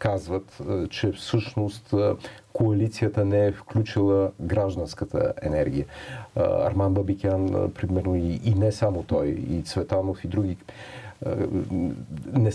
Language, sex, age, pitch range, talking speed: Bulgarian, male, 40-59, 100-120 Hz, 100 wpm